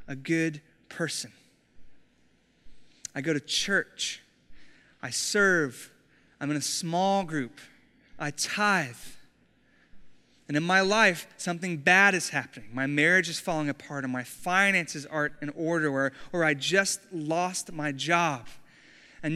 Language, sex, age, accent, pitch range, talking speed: English, male, 30-49, American, 170-220 Hz, 135 wpm